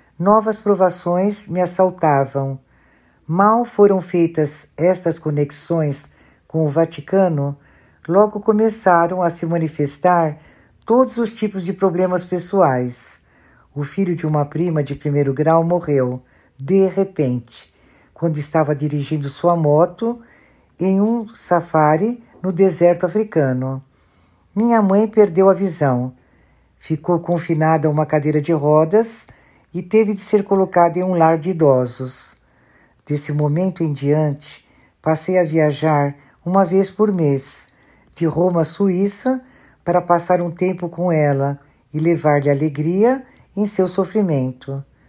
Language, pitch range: Portuguese, 145-190 Hz